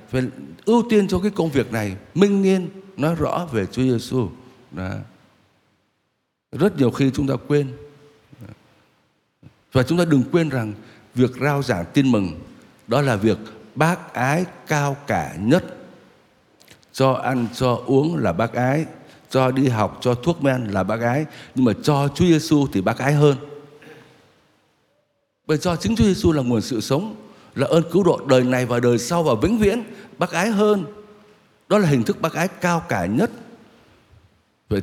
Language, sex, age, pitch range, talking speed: Vietnamese, male, 60-79, 110-155 Hz, 170 wpm